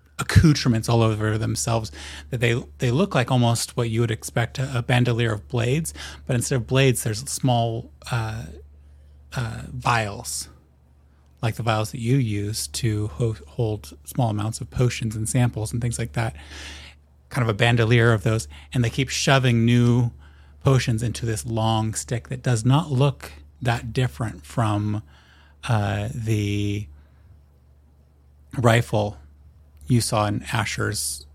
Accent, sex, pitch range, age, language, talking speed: American, male, 75-120 Hz, 30-49, English, 145 wpm